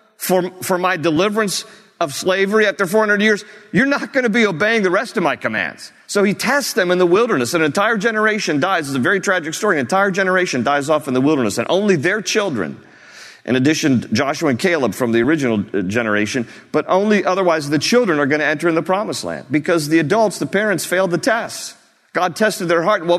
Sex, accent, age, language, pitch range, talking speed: male, American, 40-59, English, 155-200 Hz, 215 wpm